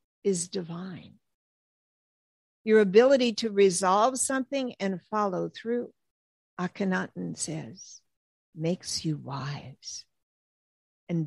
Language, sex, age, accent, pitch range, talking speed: English, female, 60-79, American, 170-240 Hz, 85 wpm